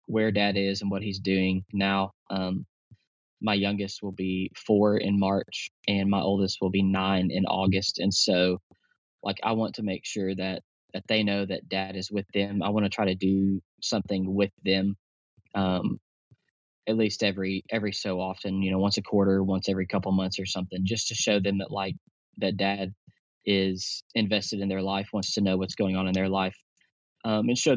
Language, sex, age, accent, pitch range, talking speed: English, male, 10-29, American, 95-110 Hz, 200 wpm